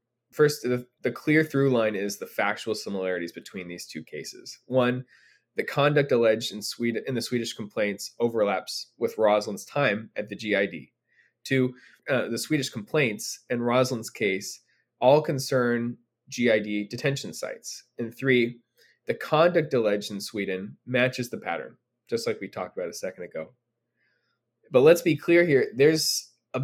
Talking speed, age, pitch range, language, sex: 155 wpm, 20-39, 115-130 Hz, English, male